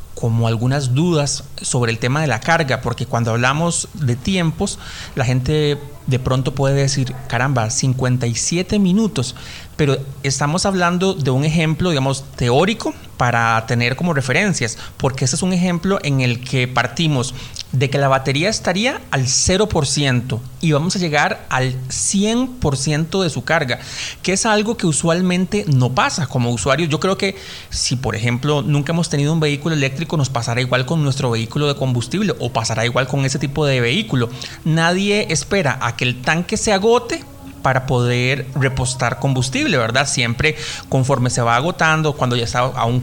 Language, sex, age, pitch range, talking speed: Spanish, male, 30-49, 125-160 Hz, 165 wpm